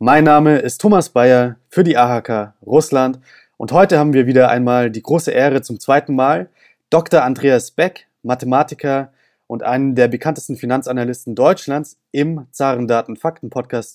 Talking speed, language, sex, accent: 140 wpm, German, male, German